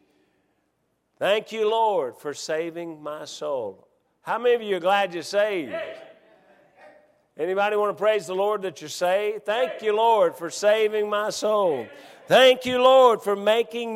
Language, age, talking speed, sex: English, 50-69, 155 wpm, male